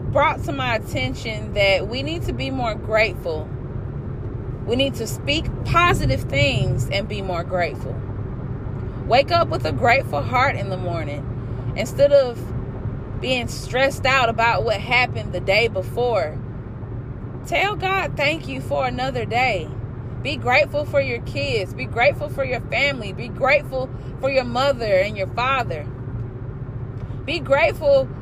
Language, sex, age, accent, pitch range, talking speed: English, female, 20-39, American, 120-135 Hz, 145 wpm